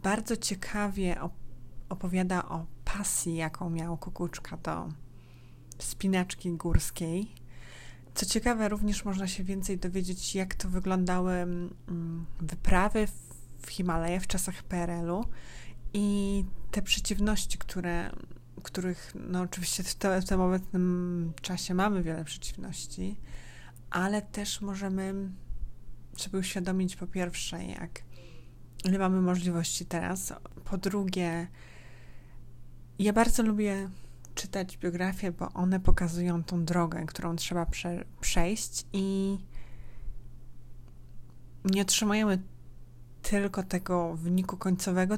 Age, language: 20-39, Polish